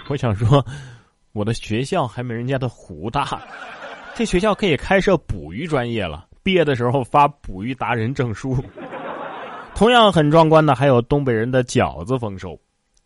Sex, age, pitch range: male, 20-39, 105-150 Hz